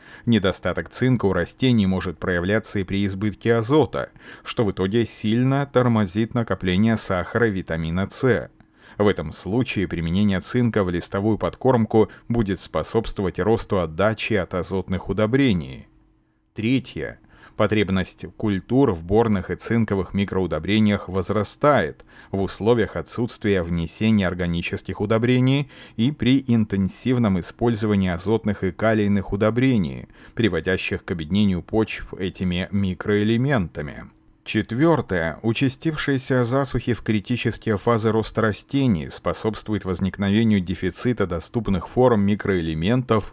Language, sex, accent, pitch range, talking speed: Russian, male, native, 95-115 Hz, 110 wpm